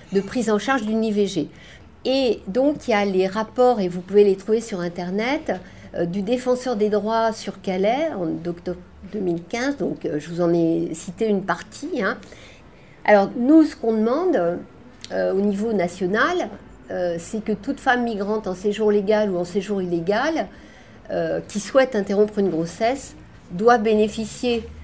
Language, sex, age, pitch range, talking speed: French, female, 50-69, 180-230 Hz, 165 wpm